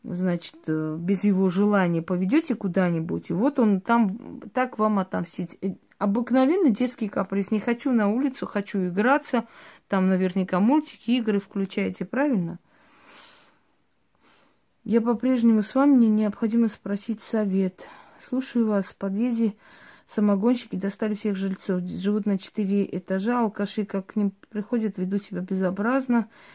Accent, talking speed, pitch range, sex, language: native, 125 wpm, 190-230 Hz, female, Russian